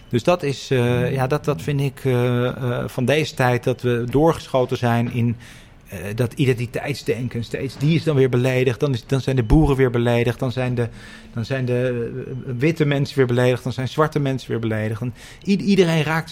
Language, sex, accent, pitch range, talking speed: Dutch, male, Dutch, 115-135 Hz, 200 wpm